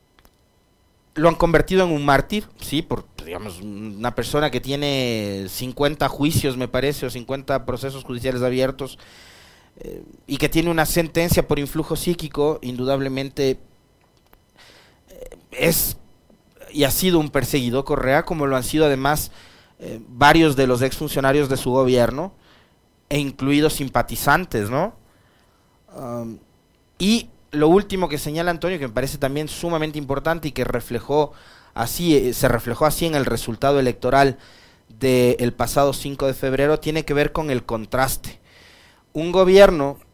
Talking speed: 140 wpm